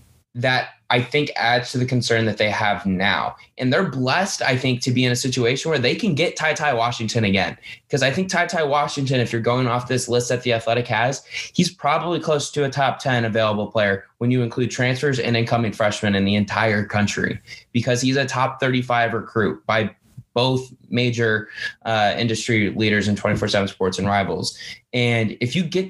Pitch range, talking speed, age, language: 115-130 Hz, 200 wpm, 20-39, English